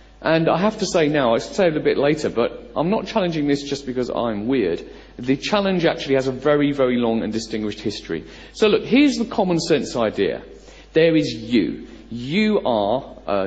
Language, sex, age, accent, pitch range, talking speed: English, male, 40-59, British, 115-165 Hz, 200 wpm